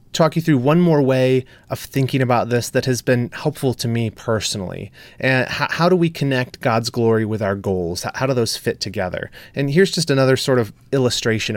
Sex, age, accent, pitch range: male, 30-49, American, 115-150 Hz